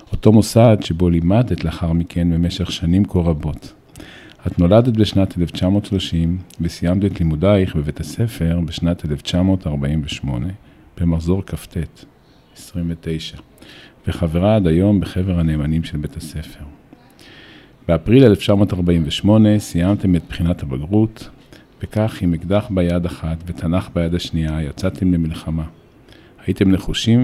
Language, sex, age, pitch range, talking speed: Hebrew, male, 50-69, 80-100 Hz, 110 wpm